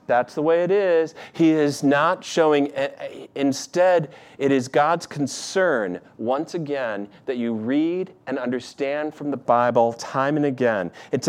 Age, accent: 40-59, American